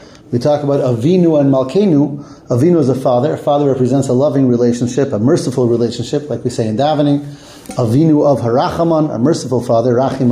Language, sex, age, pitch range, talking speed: English, male, 30-49, 130-165 Hz, 180 wpm